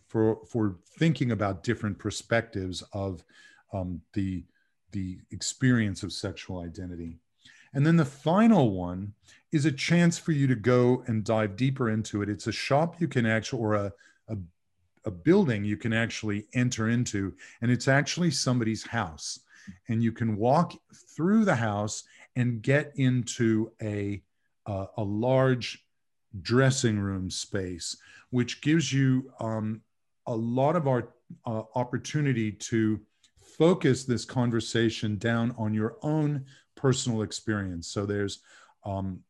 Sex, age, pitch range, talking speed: male, 40-59, 100-125 Hz, 140 wpm